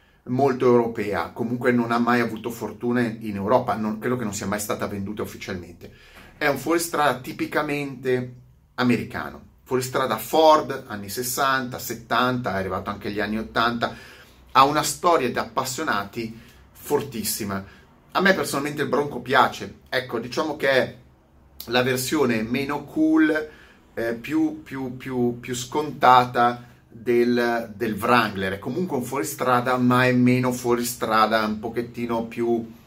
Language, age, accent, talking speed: Italian, 30-49, native, 135 wpm